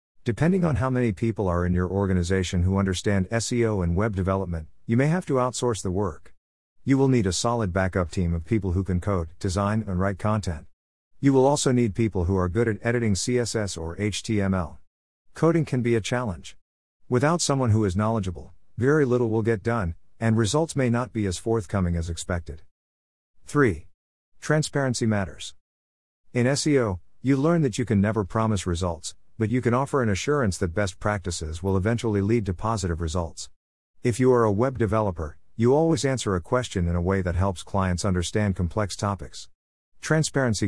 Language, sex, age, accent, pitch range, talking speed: English, male, 50-69, American, 85-115 Hz, 185 wpm